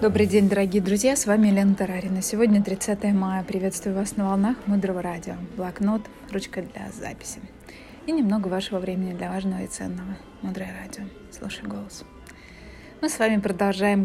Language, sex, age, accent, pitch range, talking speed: Russian, female, 20-39, native, 190-220 Hz, 160 wpm